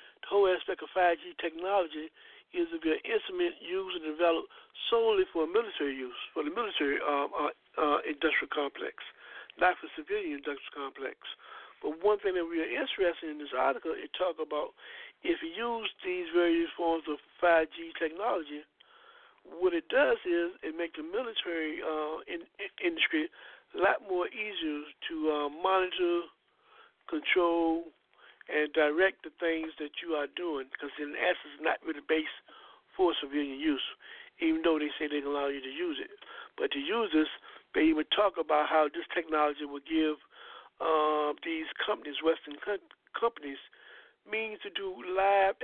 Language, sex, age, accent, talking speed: English, male, 60-79, American, 165 wpm